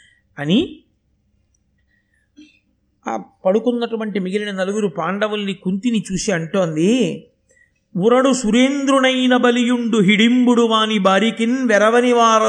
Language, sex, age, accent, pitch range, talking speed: Telugu, male, 50-69, native, 170-225 Hz, 80 wpm